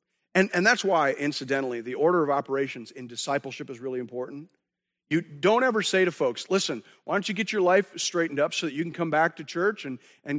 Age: 50-69